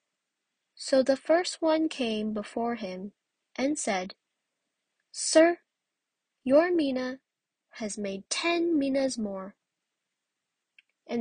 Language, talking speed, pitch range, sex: English, 95 wpm, 215-290 Hz, female